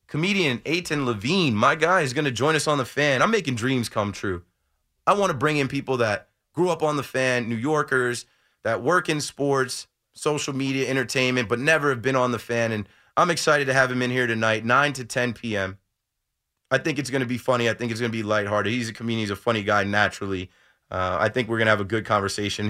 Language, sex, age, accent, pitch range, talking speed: English, male, 30-49, American, 110-140 Hz, 240 wpm